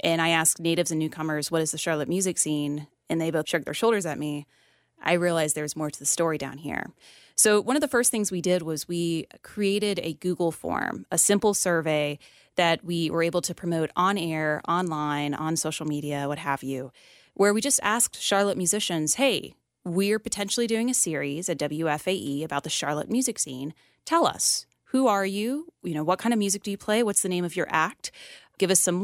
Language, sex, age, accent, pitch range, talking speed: English, female, 30-49, American, 160-210 Hz, 215 wpm